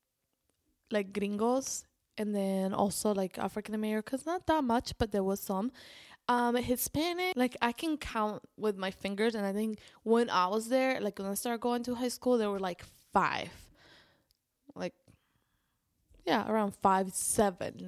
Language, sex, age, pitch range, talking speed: English, female, 10-29, 190-230 Hz, 160 wpm